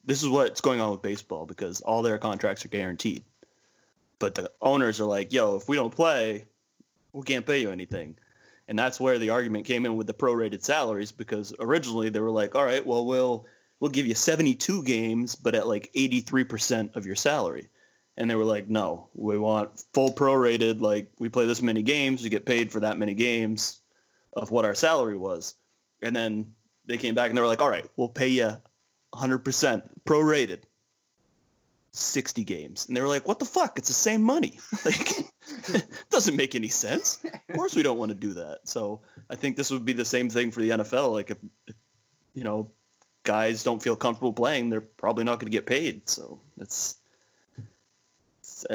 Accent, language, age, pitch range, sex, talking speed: American, English, 30-49, 110-130 Hz, male, 195 wpm